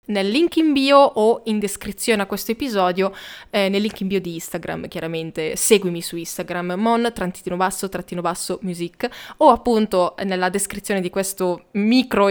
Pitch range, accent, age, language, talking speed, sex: 180-220 Hz, native, 20-39, Italian, 140 wpm, female